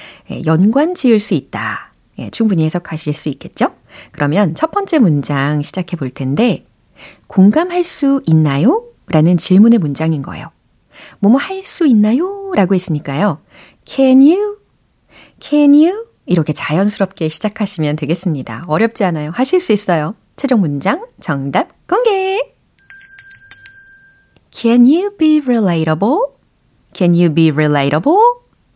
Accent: native